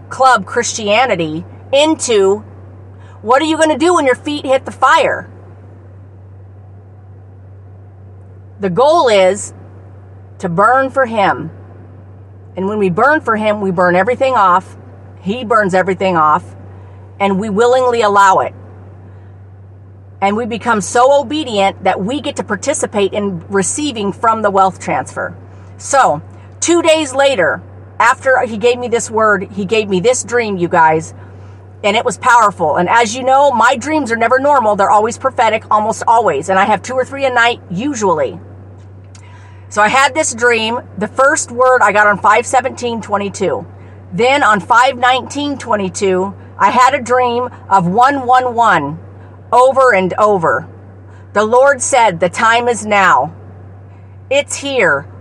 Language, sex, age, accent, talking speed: English, female, 40-59, American, 150 wpm